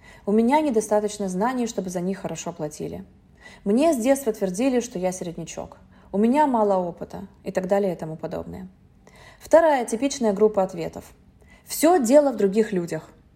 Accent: native